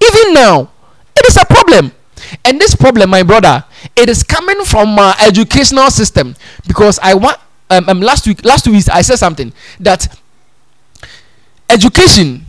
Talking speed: 155 wpm